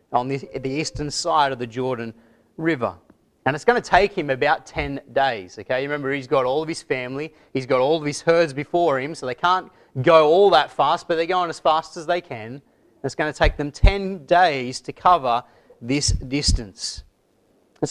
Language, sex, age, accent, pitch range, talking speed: English, male, 30-49, Australian, 130-175 Hz, 210 wpm